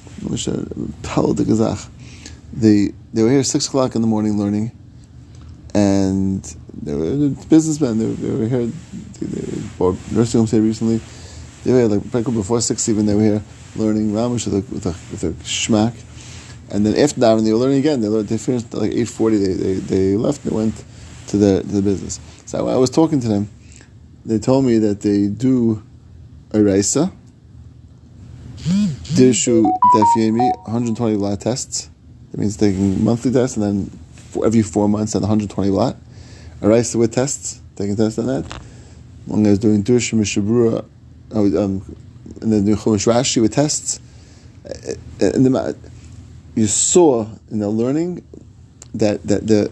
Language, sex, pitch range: English, male, 105-120 Hz